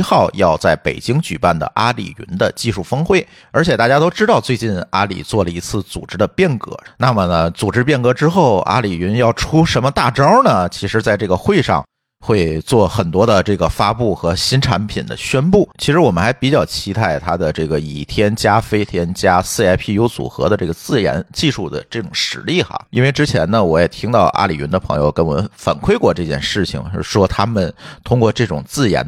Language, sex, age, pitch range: Chinese, male, 50-69, 90-125 Hz